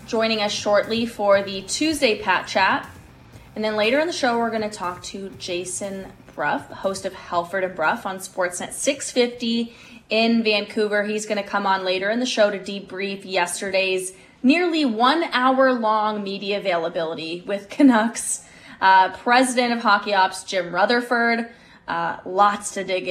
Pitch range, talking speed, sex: 190-245 Hz, 155 wpm, female